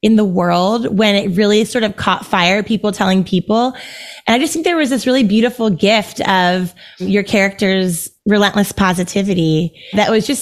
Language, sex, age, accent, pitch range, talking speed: English, female, 20-39, American, 190-230 Hz, 180 wpm